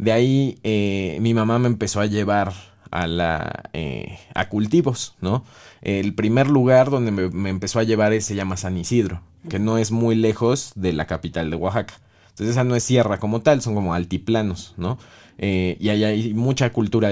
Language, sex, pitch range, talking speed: Spanish, male, 95-115 Hz, 195 wpm